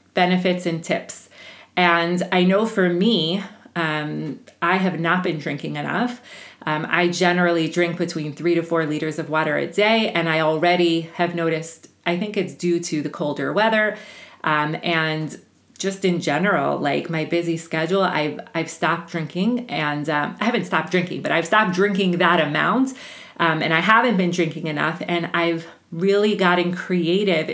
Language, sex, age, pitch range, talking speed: English, female, 30-49, 160-190 Hz, 170 wpm